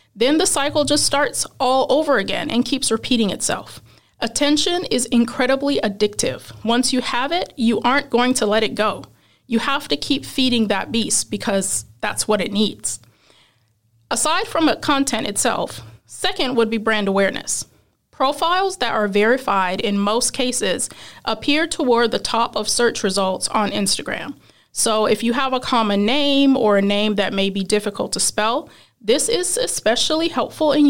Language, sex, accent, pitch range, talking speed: English, female, American, 210-285 Hz, 165 wpm